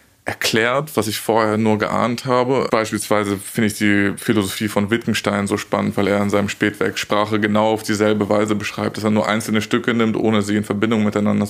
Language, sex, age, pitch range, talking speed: German, male, 20-39, 100-110 Hz, 200 wpm